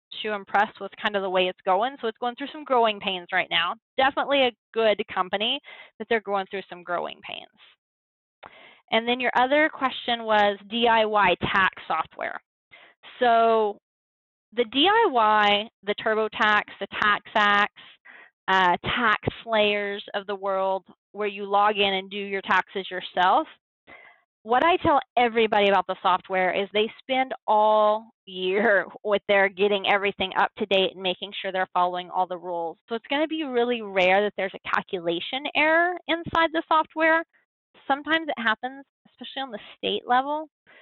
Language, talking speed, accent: English, 160 wpm, American